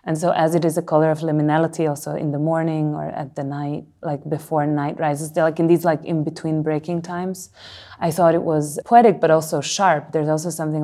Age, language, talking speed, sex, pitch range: 30-49, English, 225 wpm, female, 150-165 Hz